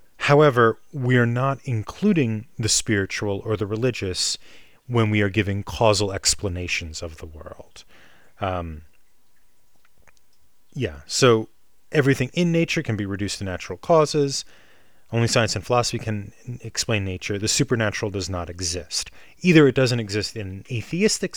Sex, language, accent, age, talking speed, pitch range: male, English, American, 30-49, 140 wpm, 95-120 Hz